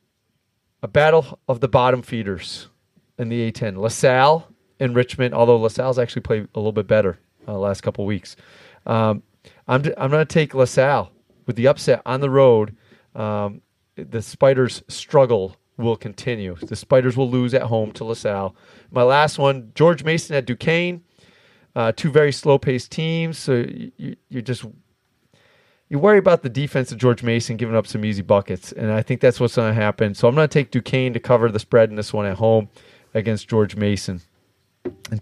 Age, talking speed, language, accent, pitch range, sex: 40-59, 185 wpm, English, American, 110-140 Hz, male